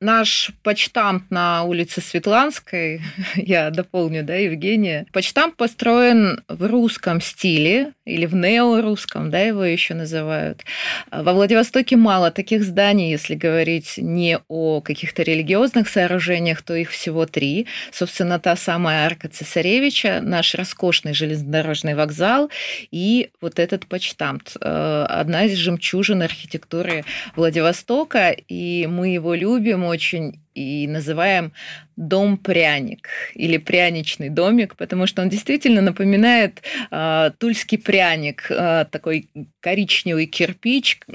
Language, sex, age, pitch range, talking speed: Russian, female, 20-39, 160-200 Hz, 115 wpm